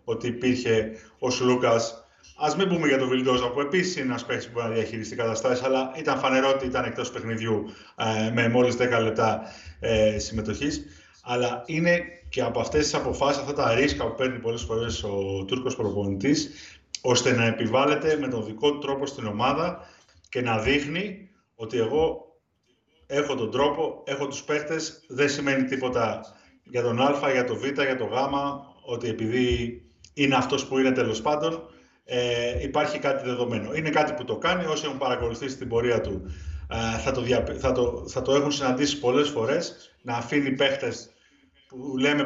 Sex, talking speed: male, 170 wpm